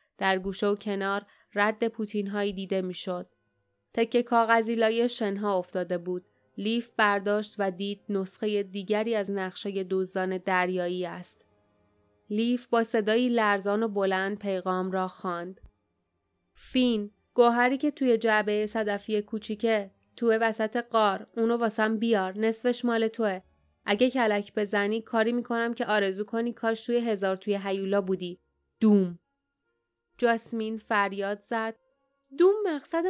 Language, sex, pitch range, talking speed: Persian, female, 195-245 Hz, 125 wpm